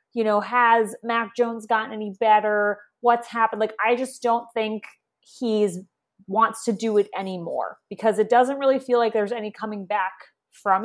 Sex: female